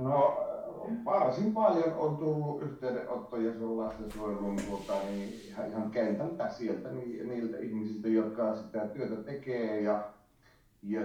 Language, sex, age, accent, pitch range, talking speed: Finnish, male, 30-49, native, 95-120 Hz, 115 wpm